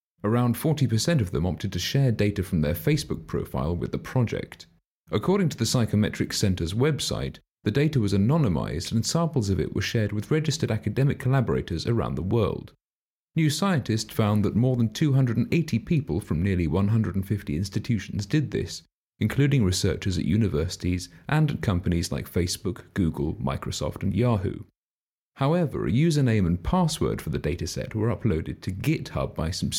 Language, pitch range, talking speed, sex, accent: English, 95-130 Hz, 160 wpm, male, British